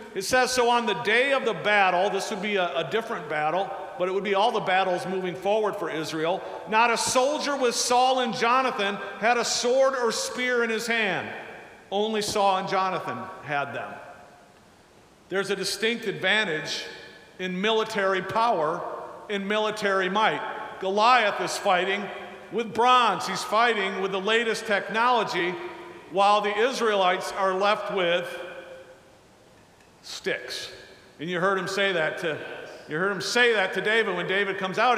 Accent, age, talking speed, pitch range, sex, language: American, 50-69, 160 wpm, 185-230 Hz, male, English